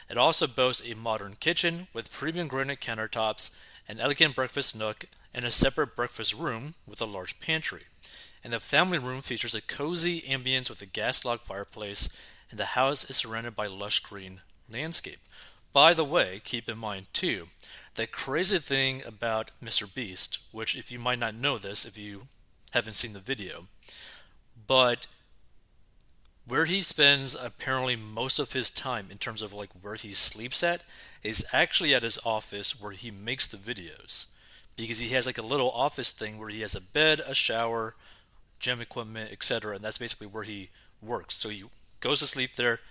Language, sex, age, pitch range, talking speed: English, male, 30-49, 105-130 Hz, 180 wpm